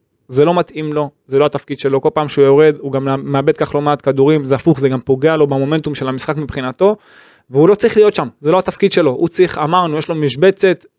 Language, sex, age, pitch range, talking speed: Hebrew, male, 20-39, 135-180 Hz, 240 wpm